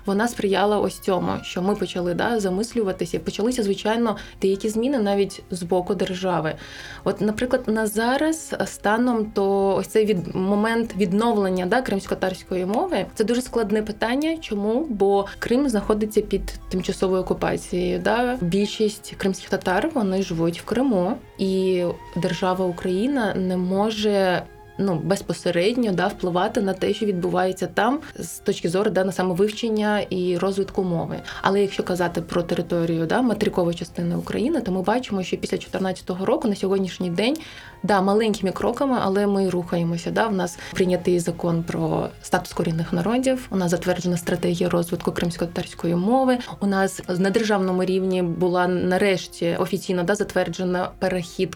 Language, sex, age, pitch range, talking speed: Ukrainian, female, 20-39, 180-210 Hz, 145 wpm